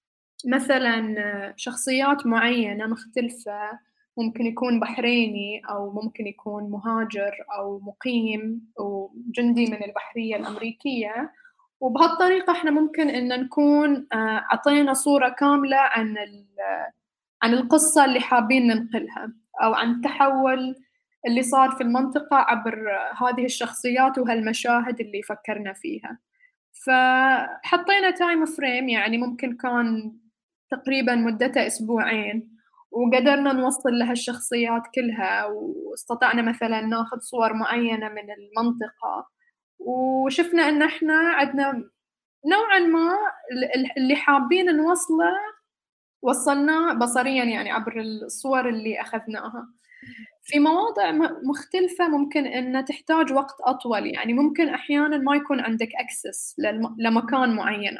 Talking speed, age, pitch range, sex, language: 100 wpm, 10-29, 225-290 Hz, female, Arabic